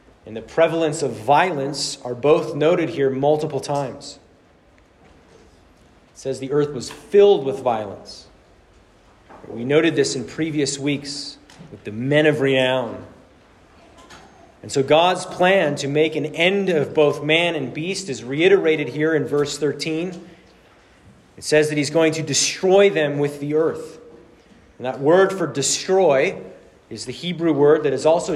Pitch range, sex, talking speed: 135-160 Hz, male, 150 wpm